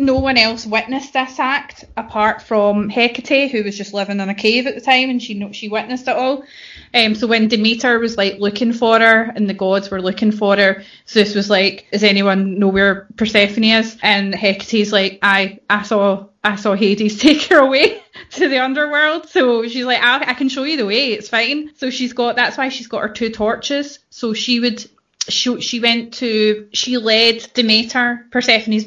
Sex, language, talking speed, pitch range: female, English, 205 wpm, 205-250 Hz